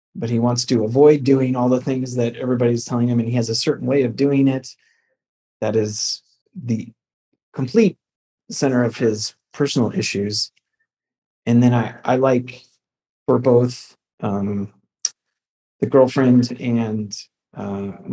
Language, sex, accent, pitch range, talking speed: English, male, American, 115-140 Hz, 140 wpm